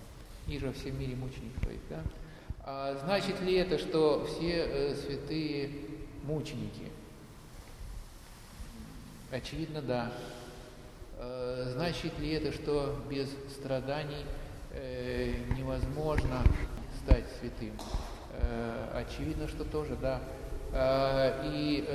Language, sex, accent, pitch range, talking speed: Russian, male, native, 120-145 Hz, 95 wpm